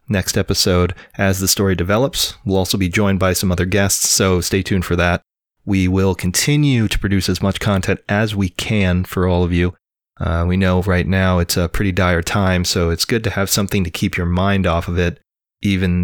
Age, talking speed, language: 30-49, 215 wpm, English